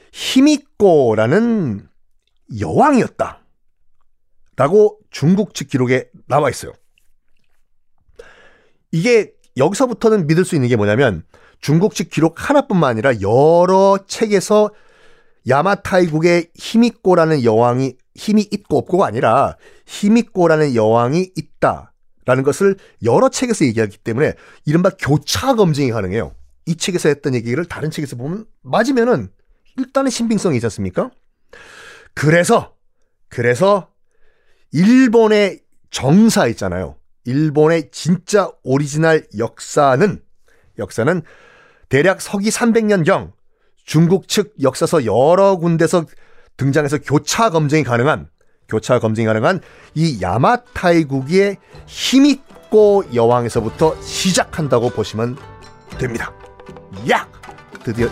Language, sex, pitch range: Korean, male, 125-210 Hz